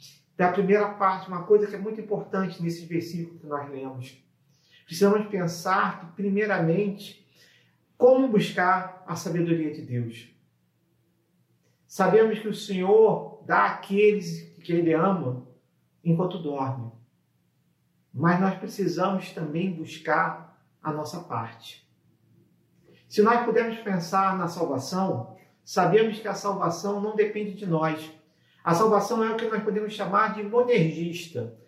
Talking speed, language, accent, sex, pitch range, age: 125 wpm, Portuguese, Brazilian, male, 170-205 Hz, 40-59